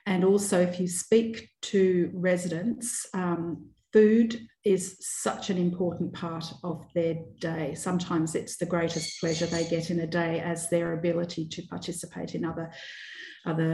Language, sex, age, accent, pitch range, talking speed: English, female, 40-59, Australian, 165-185 Hz, 155 wpm